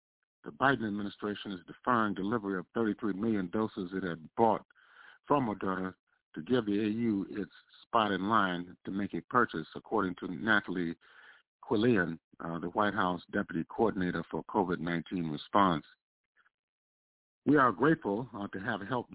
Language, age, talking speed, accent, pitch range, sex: English, 50-69, 145 wpm, American, 90-110 Hz, male